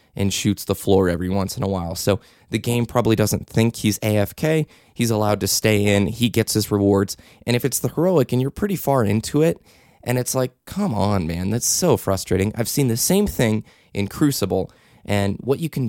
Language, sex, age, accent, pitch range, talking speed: English, male, 20-39, American, 100-125 Hz, 215 wpm